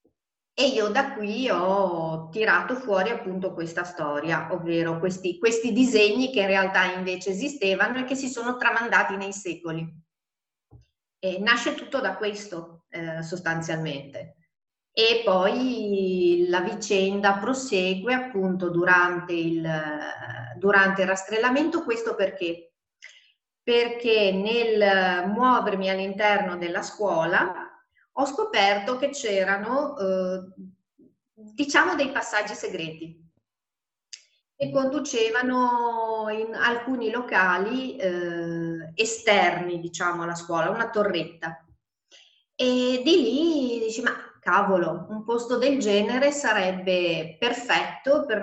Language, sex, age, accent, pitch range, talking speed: Italian, female, 40-59, native, 175-235 Hz, 105 wpm